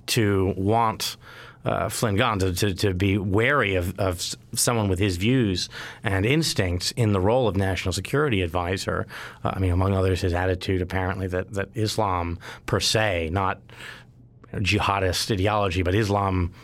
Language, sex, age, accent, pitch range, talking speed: English, male, 30-49, American, 95-120 Hz, 155 wpm